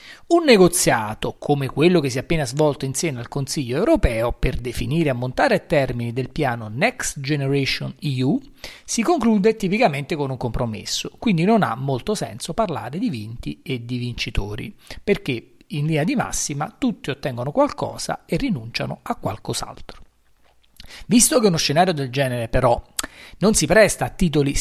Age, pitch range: 40-59, 130-185 Hz